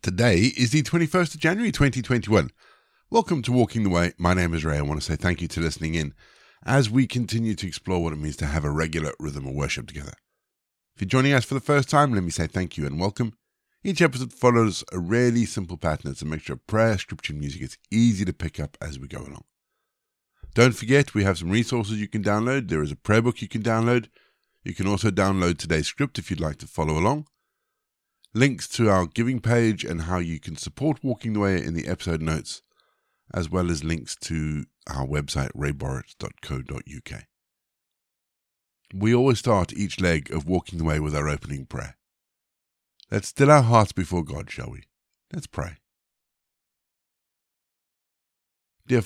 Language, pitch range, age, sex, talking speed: English, 80-120 Hz, 50-69, male, 195 wpm